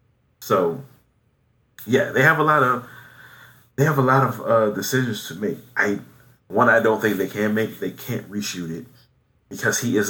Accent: American